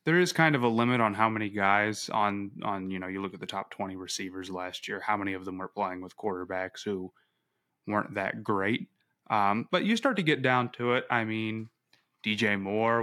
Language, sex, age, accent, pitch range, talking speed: English, male, 20-39, American, 95-115 Hz, 220 wpm